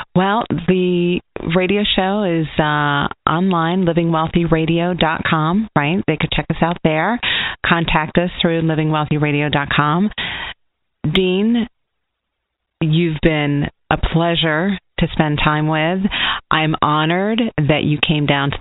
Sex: female